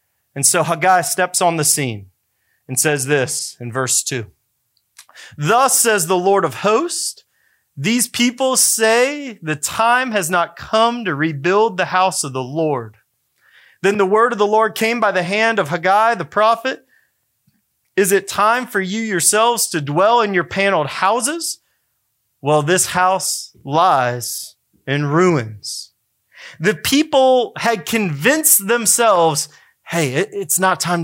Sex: male